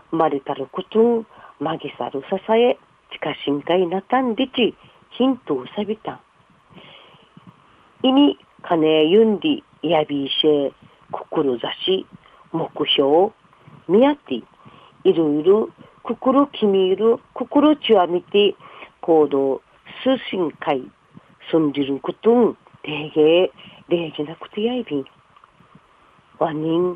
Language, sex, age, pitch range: Japanese, female, 40-59, 155-220 Hz